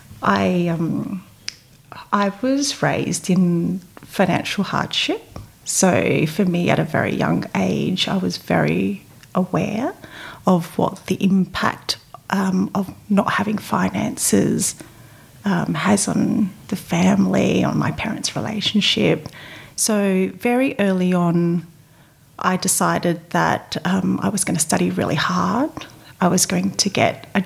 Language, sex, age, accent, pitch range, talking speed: English, female, 30-49, Australian, 170-200 Hz, 130 wpm